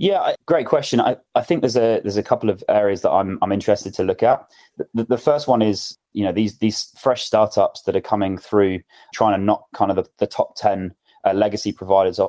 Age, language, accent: 20-39, English, British